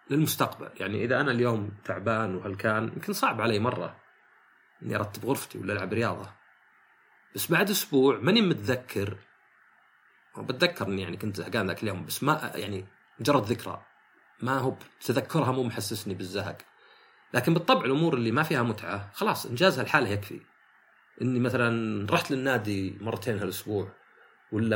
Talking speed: 140 wpm